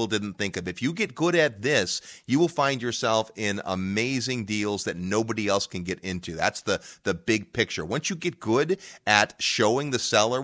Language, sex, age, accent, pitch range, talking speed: English, male, 30-49, American, 105-155 Hz, 200 wpm